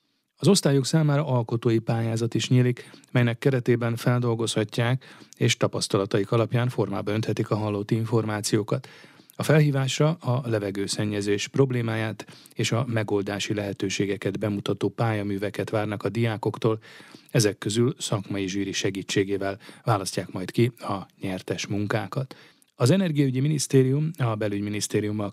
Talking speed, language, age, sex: 115 wpm, Hungarian, 30-49, male